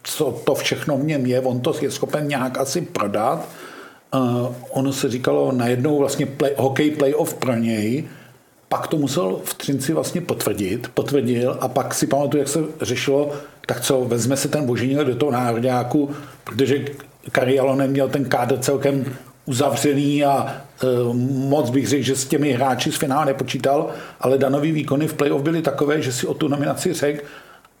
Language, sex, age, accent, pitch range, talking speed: Czech, male, 50-69, native, 130-145 Hz, 175 wpm